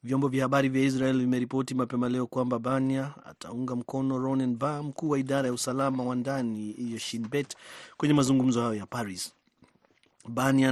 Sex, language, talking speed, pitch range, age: male, Swahili, 155 wpm, 115-135 Hz, 30-49